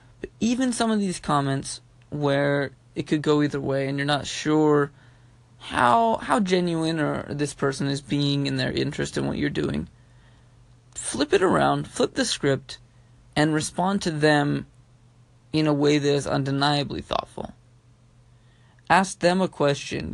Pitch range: 125-165 Hz